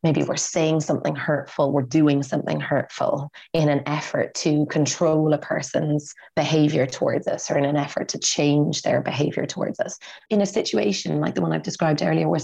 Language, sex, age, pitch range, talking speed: English, female, 30-49, 150-185 Hz, 190 wpm